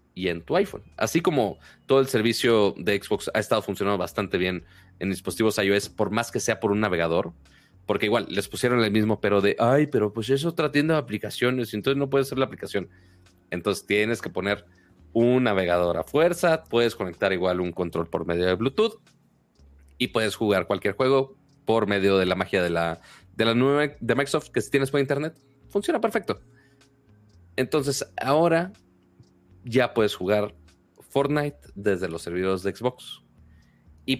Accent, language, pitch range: Mexican, Spanish, 90-135 Hz